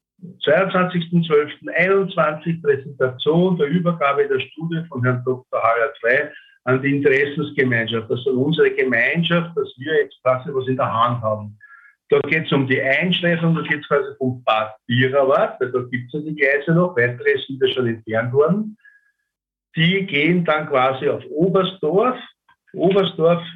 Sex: male